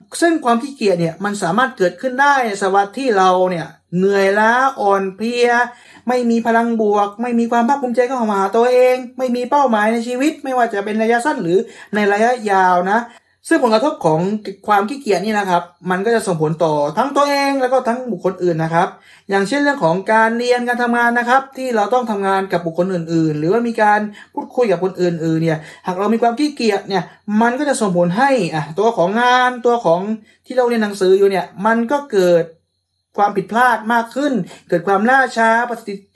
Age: 20-39